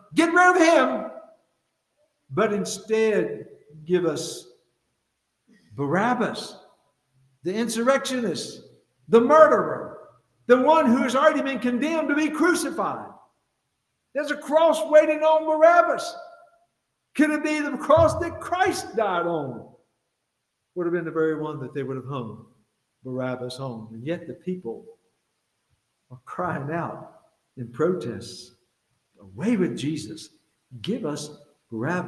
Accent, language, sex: American, English, male